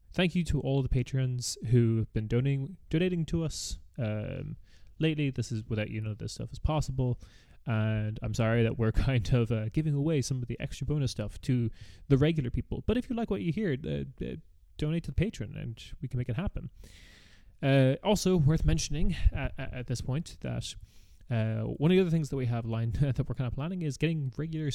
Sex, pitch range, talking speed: male, 110-145 Hz, 220 wpm